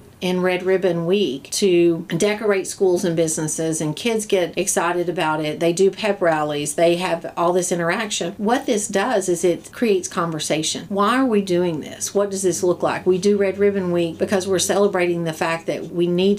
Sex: female